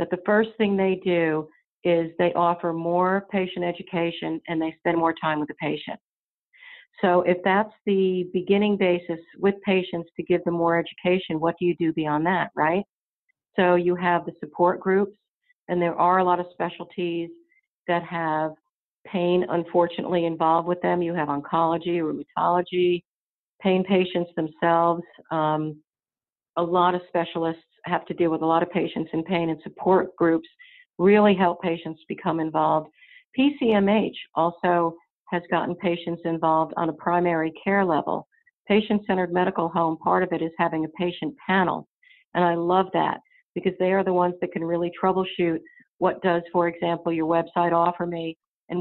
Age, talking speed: 50-69, 165 wpm